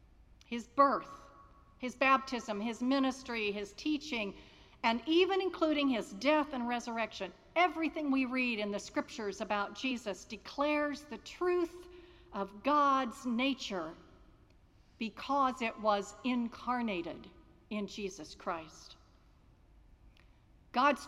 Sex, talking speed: female, 105 wpm